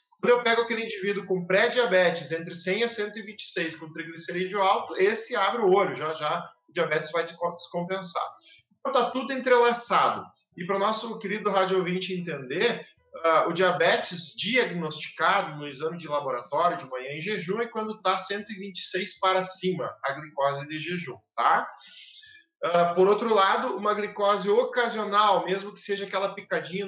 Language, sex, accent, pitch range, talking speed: Portuguese, male, Brazilian, 170-215 Hz, 155 wpm